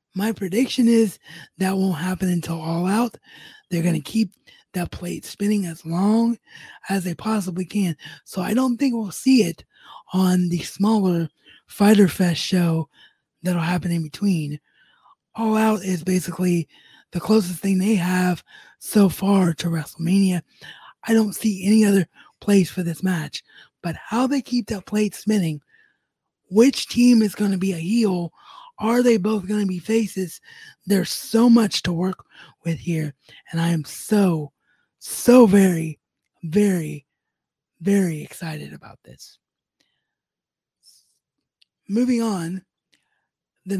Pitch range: 175-215 Hz